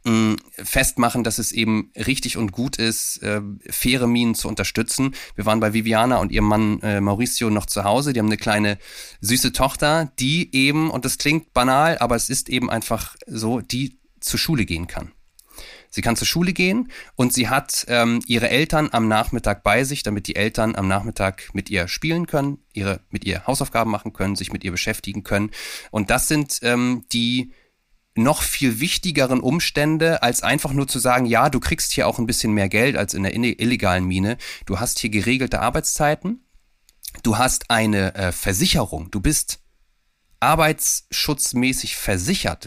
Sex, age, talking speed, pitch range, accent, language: male, 30-49, 175 wpm, 105-130 Hz, German, German